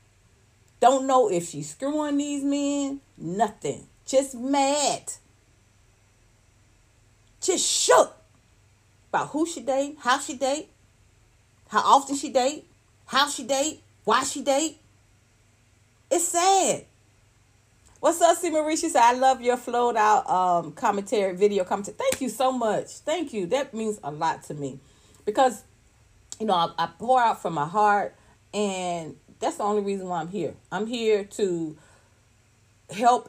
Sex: female